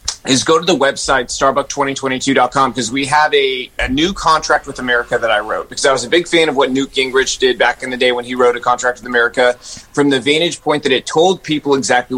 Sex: male